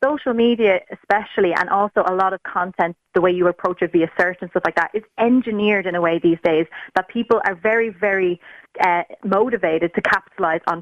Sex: female